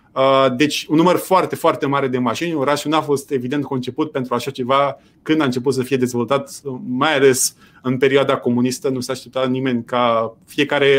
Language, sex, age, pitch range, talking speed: Romanian, male, 30-49, 135-180 Hz, 180 wpm